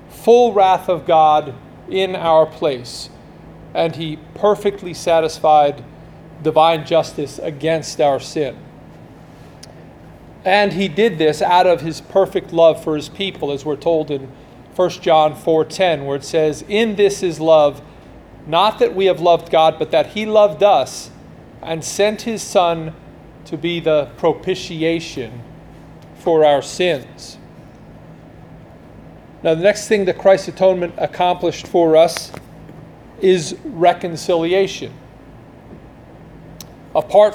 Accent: American